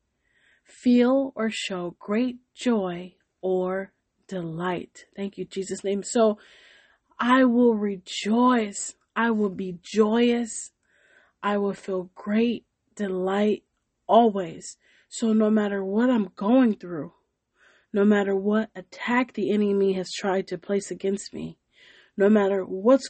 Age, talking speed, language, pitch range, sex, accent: 30-49, 120 wpm, English, 185-220 Hz, female, American